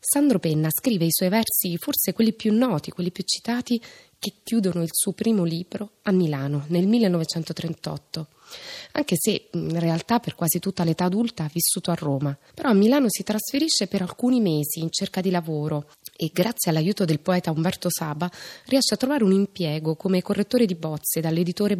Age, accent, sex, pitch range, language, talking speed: 20-39, native, female, 160-200 Hz, Italian, 180 wpm